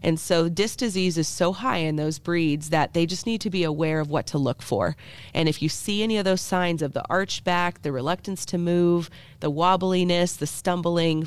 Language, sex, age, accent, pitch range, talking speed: English, female, 30-49, American, 150-180 Hz, 225 wpm